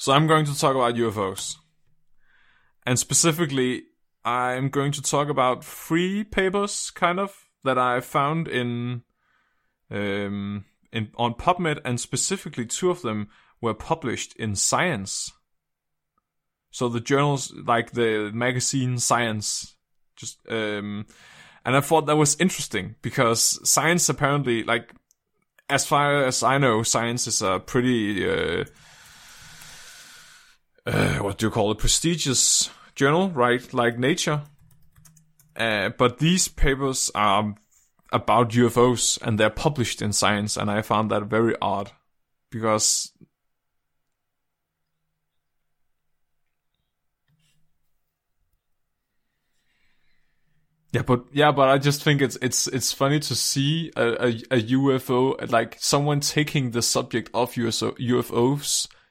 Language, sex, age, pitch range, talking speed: Danish, male, 20-39, 110-150 Hz, 120 wpm